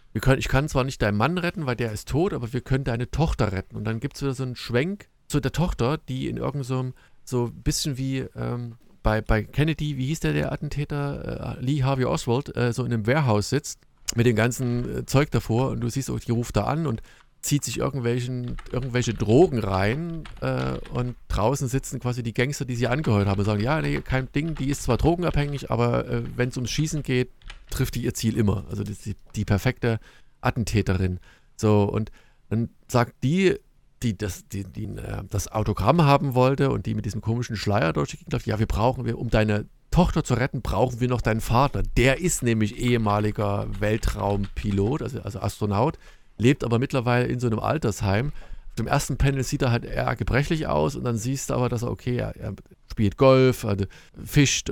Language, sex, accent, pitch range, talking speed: German, male, German, 110-135 Hz, 205 wpm